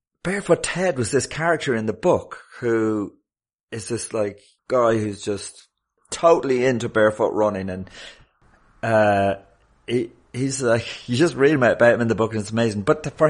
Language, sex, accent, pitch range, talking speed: English, male, British, 90-120 Hz, 170 wpm